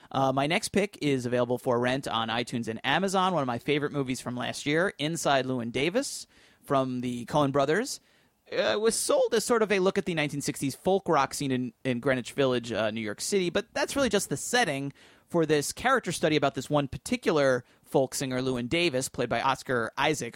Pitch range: 125-170 Hz